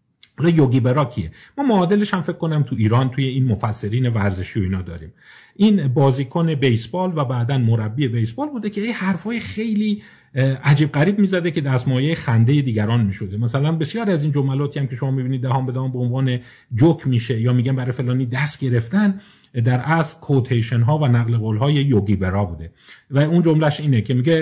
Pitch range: 120-150 Hz